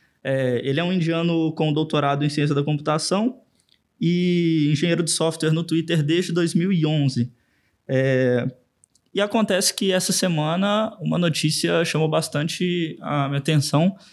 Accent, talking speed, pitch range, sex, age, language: Brazilian, 125 wpm, 140-175 Hz, male, 20-39, Portuguese